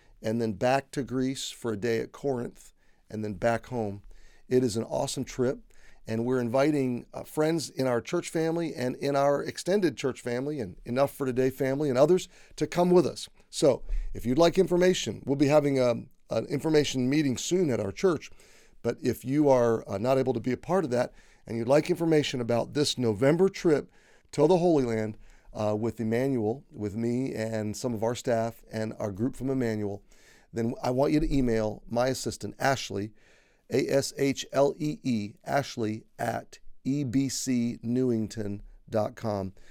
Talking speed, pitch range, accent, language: 170 wpm, 110-140 Hz, American, English